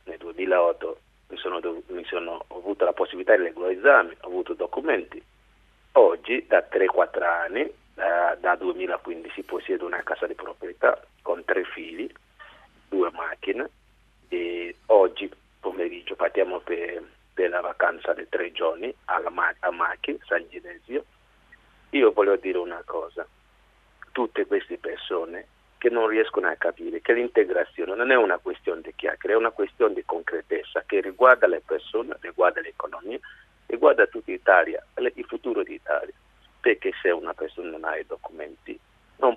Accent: native